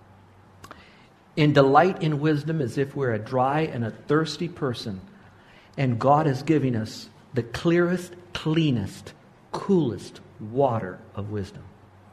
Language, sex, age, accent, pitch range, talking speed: English, male, 60-79, American, 105-155 Hz, 125 wpm